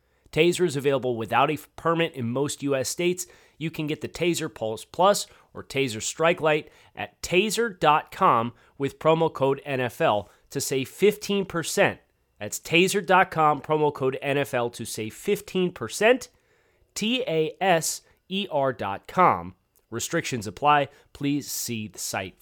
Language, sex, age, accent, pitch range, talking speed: English, male, 30-49, American, 120-170 Hz, 120 wpm